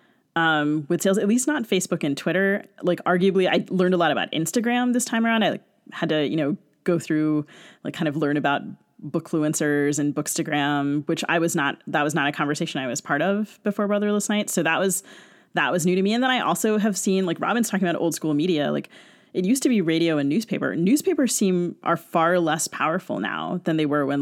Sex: female